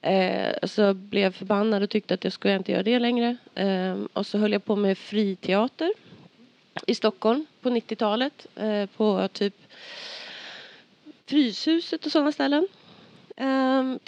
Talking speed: 150 wpm